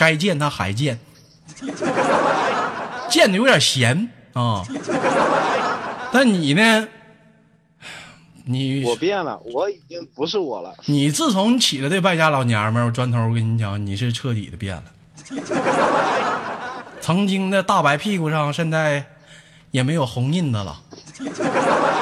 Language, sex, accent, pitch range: Chinese, male, native, 120-165 Hz